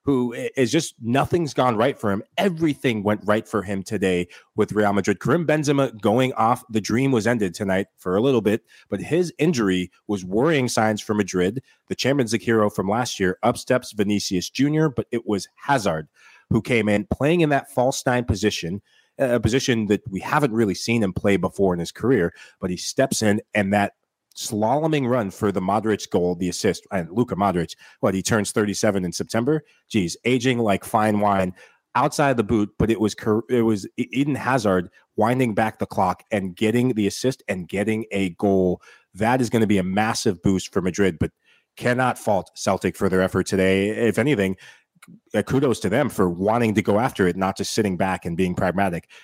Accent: American